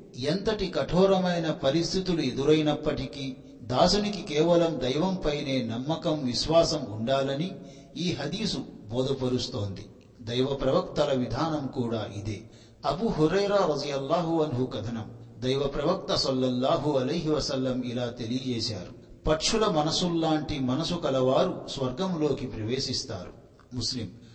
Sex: male